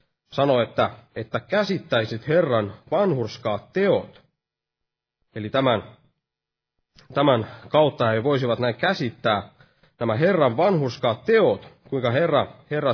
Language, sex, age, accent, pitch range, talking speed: Finnish, male, 30-49, native, 120-165 Hz, 100 wpm